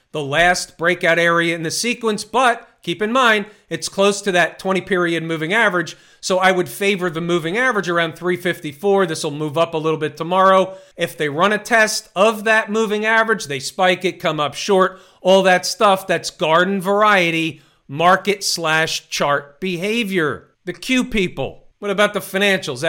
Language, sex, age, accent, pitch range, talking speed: English, male, 40-59, American, 165-200 Hz, 180 wpm